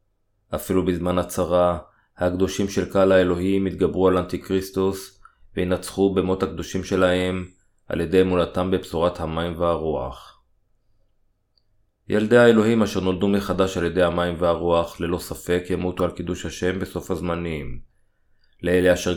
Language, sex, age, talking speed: Hebrew, male, 20-39, 125 wpm